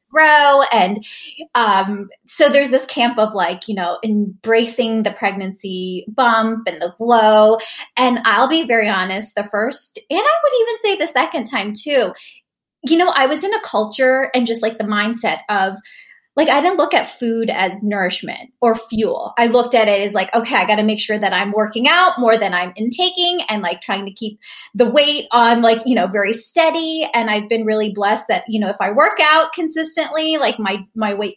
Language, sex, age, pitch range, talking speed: English, female, 20-39, 215-290 Hz, 205 wpm